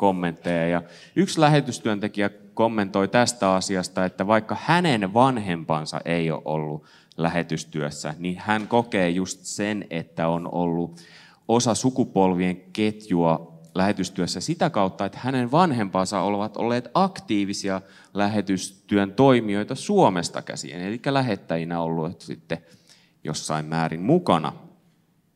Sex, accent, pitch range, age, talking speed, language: male, native, 95-155 Hz, 30-49, 110 wpm, Finnish